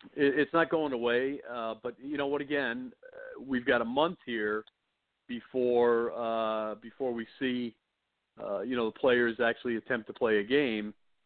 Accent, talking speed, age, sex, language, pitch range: American, 165 wpm, 50-69, male, English, 115-140 Hz